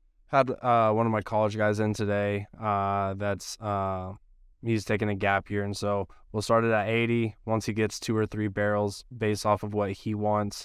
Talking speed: 210 wpm